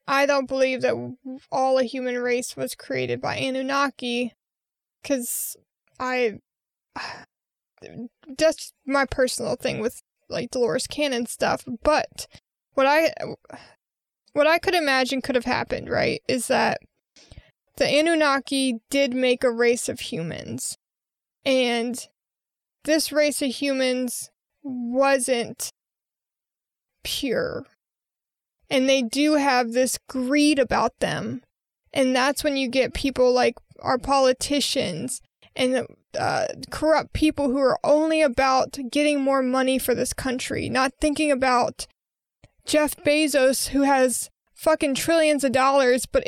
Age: 20-39